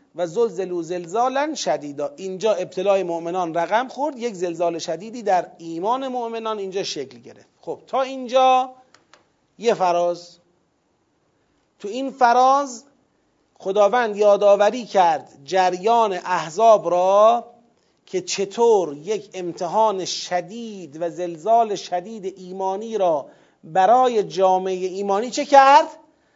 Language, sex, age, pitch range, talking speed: Persian, male, 40-59, 180-250 Hz, 110 wpm